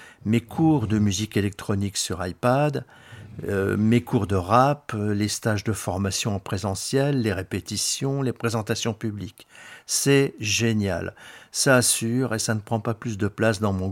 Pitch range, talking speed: 105-130 Hz, 160 wpm